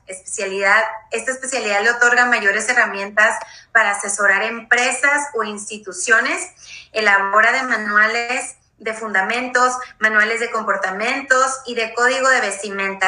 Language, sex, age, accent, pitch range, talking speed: Spanish, female, 30-49, Mexican, 205-245 Hz, 115 wpm